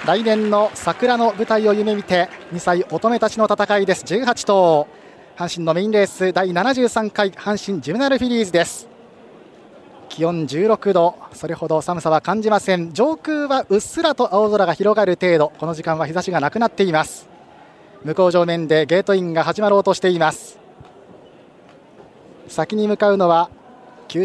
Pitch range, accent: 160-210 Hz, native